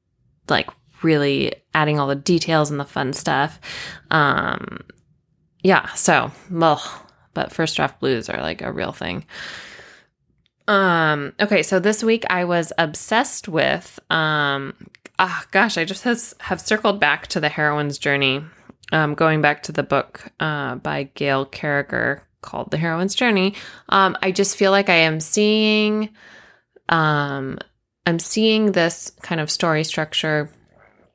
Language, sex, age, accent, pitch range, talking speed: English, female, 20-39, American, 145-185 Hz, 145 wpm